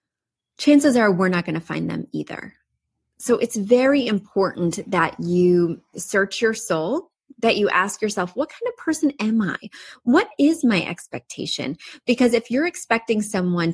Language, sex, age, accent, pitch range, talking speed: English, female, 30-49, American, 185-255 Hz, 160 wpm